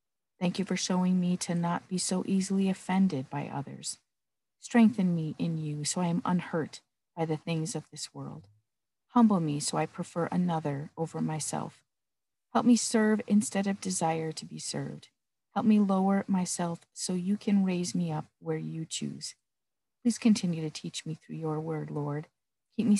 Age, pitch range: 40-59, 155-185 Hz